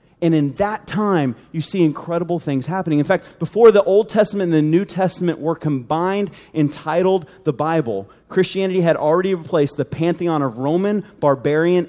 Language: English